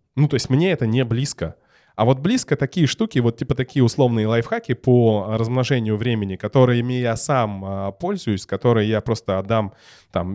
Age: 20-39